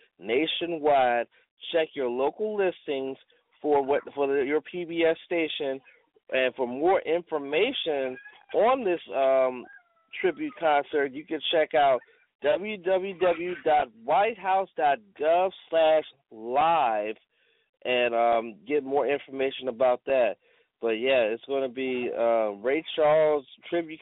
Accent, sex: American, male